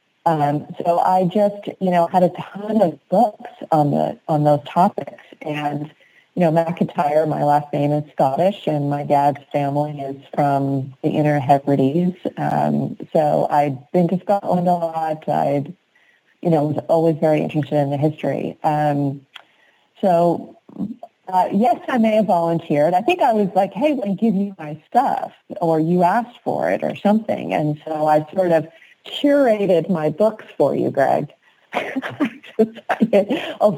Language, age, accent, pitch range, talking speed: English, 40-59, American, 150-205 Hz, 160 wpm